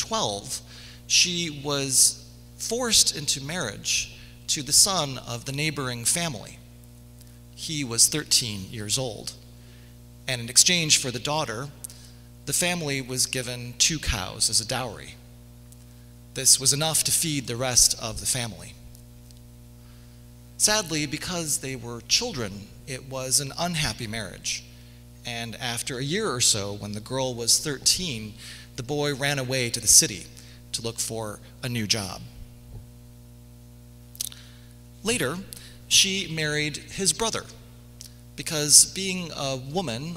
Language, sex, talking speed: English, male, 125 wpm